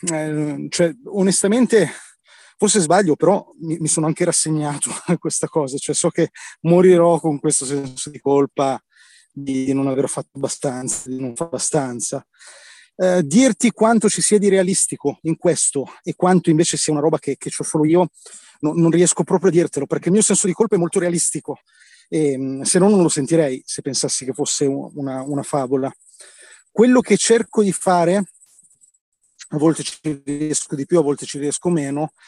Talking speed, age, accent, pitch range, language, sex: 180 wpm, 30-49, native, 145-175 Hz, Italian, male